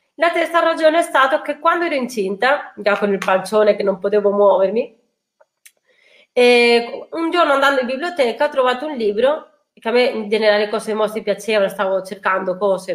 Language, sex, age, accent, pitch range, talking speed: Italian, female, 30-49, native, 205-275 Hz, 180 wpm